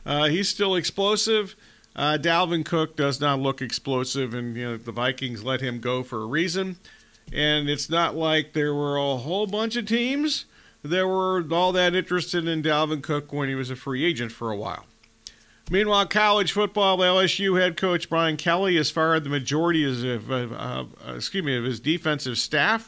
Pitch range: 145-195 Hz